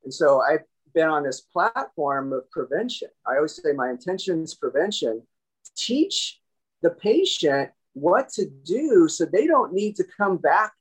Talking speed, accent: 160 wpm, American